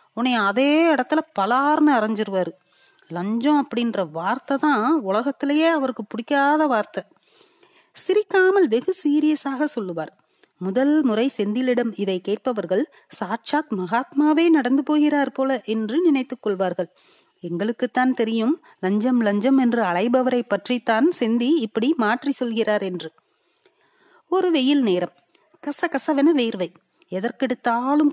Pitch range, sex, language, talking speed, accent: 210-295 Hz, female, Tamil, 55 wpm, native